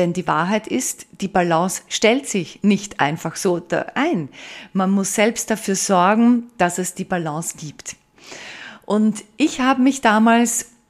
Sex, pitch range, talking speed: female, 170-225 Hz, 150 wpm